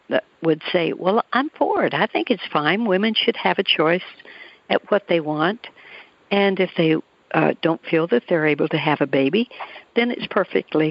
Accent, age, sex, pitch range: American, 60-79, female, 160-195 Hz